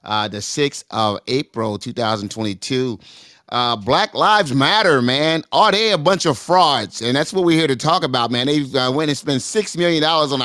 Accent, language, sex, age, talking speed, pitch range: American, English, male, 30-49, 200 wpm, 120-155 Hz